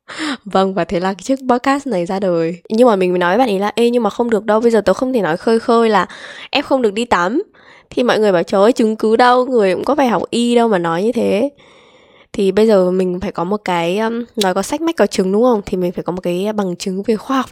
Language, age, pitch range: Vietnamese, 10-29, 185-240 Hz